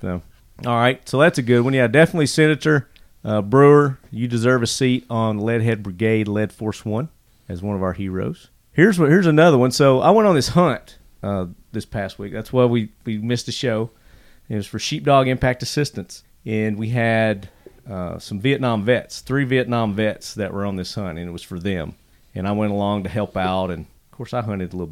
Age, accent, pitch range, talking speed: 40-59, American, 105-130 Hz, 215 wpm